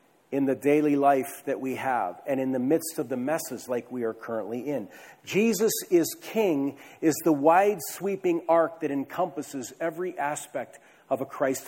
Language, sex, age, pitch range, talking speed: English, male, 50-69, 140-195 Hz, 170 wpm